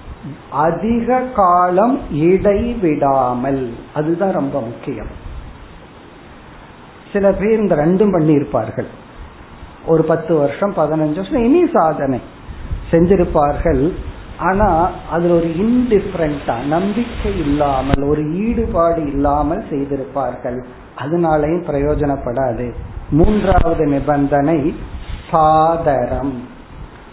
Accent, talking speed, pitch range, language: native, 70 wpm, 145-185 Hz, Tamil